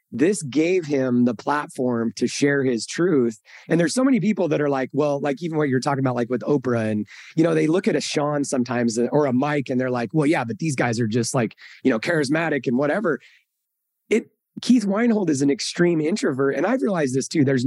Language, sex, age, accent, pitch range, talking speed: English, male, 30-49, American, 125-165 Hz, 230 wpm